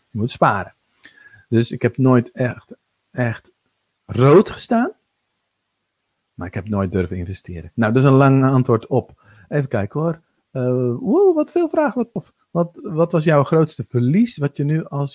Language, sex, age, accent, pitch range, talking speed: Dutch, male, 50-69, Dutch, 125-165 Hz, 160 wpm